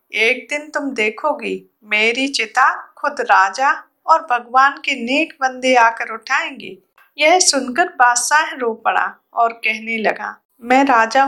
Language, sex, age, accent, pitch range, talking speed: Hindi, female, 50-69, native, 225-295 Hz, 120 wpm